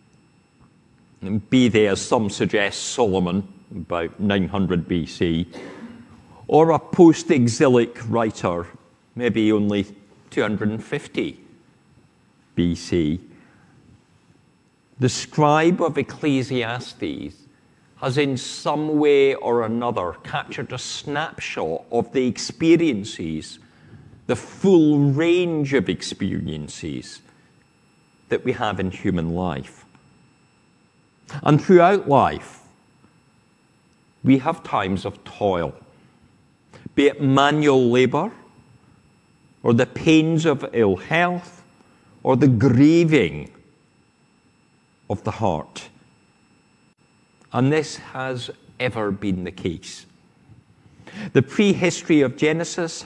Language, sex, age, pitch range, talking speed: English, male, 50-69, 105-150 Hz, 90 wpm